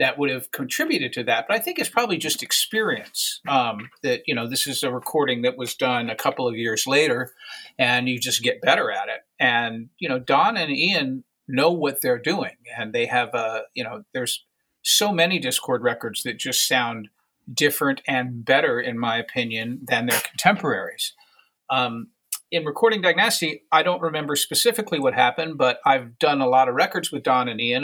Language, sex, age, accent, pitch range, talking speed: English, male, 50-69, American, 125-175 Hz, 195 wpm